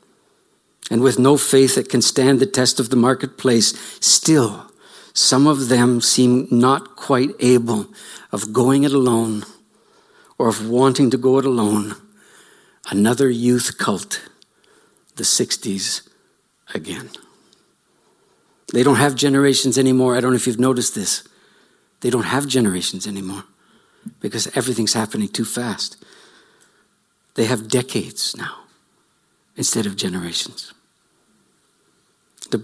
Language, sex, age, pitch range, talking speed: English, male, 60-79, 115-135 Hz, 125 wpm